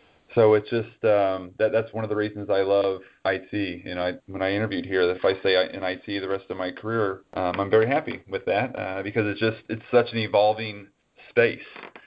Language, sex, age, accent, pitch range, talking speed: English, male, 30-49, American, 95-110 Hz, 235 wpm